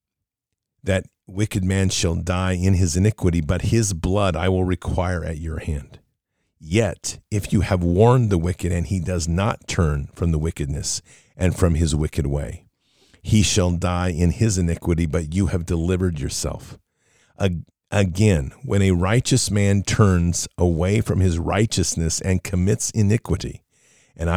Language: English